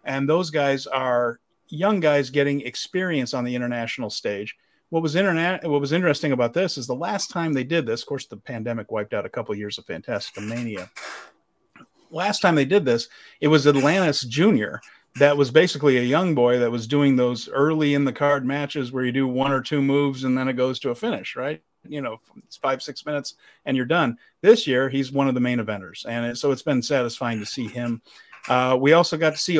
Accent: American